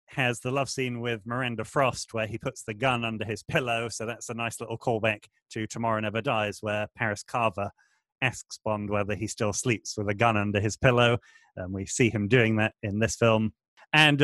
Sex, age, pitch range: male, 30-49, 110-130 Hz